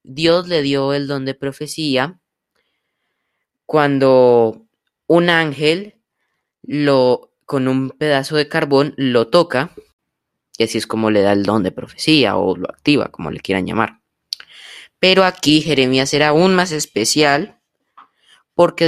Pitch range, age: 115-155 Hz, 10-29